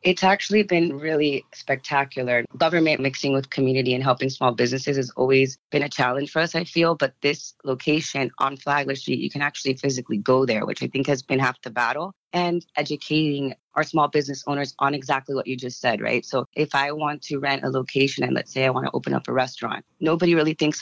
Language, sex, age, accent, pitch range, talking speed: English, female, 30-49, American, 130-150 Hz, 220 wpm